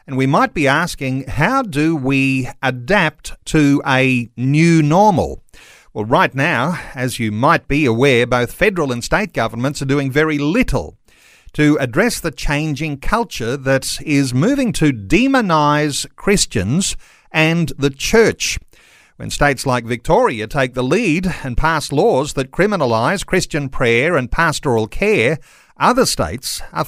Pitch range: 130-165 Hz